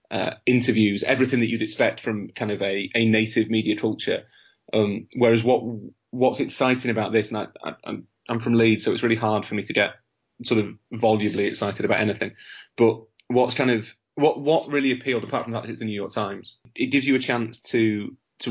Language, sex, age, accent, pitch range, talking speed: English, male, 30-49, British, 110-125 Hz, 215 wpm